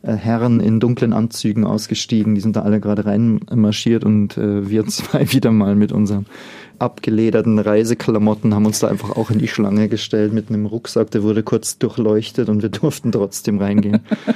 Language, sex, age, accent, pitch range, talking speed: German, male, 30-49, German, 105-115 Hz, 175 wpm